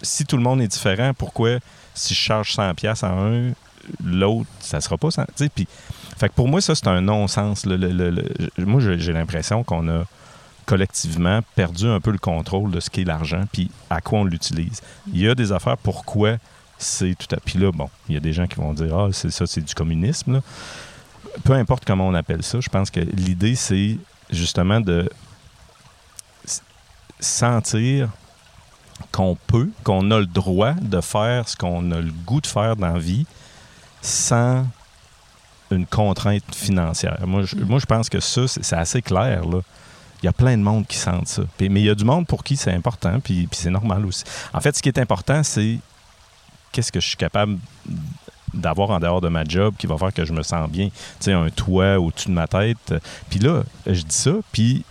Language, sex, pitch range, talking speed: French, male, 90-120 Hz, 210 wpm